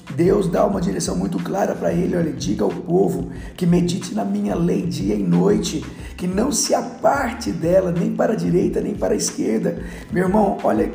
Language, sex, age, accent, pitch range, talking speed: Portuguese, male, 50-69, Brazilian, 155-195 Hz, 195 wpm